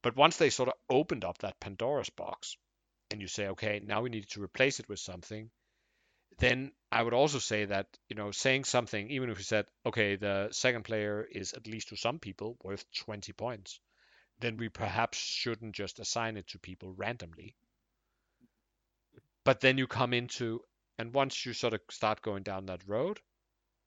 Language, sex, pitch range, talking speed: English, male, 105-125 Hz, 185 wpm